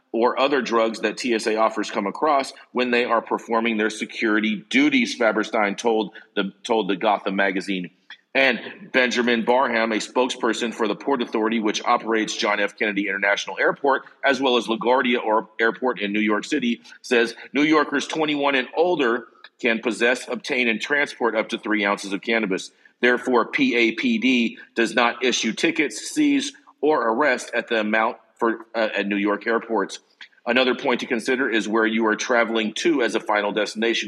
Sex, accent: male, American